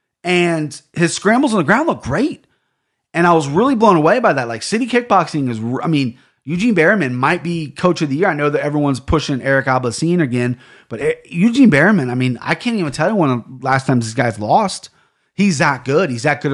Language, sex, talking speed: English, male, 220 wpm